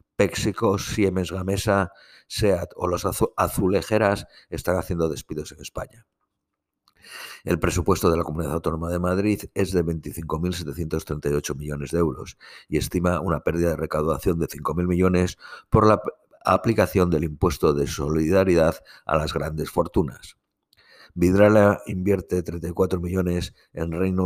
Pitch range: 85-100 Hz